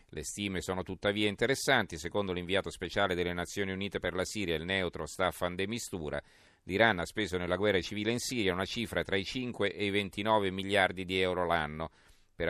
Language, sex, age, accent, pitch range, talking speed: Italian, male, 40-59, native, 85-105 Hz, 190 wpm